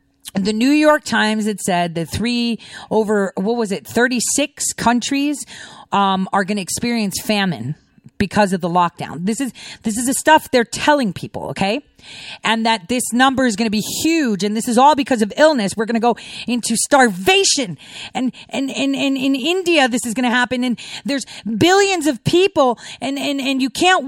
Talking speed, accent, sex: 195 wpm, American, female